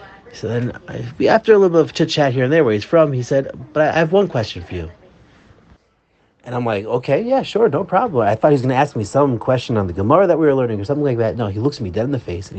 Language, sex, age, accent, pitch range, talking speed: English, male, 30-49, American, 105-150 Hz, 290 wpm